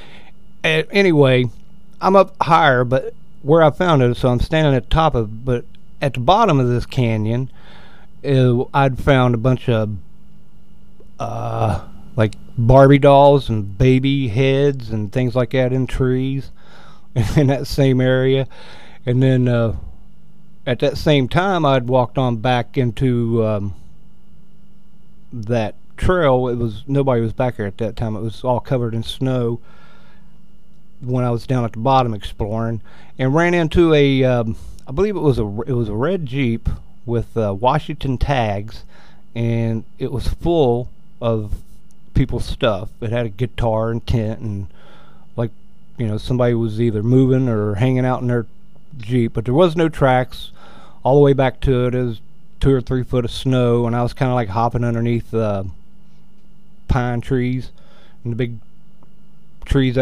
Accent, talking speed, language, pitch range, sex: American, 165 wpm, English, 115-155 Hz, male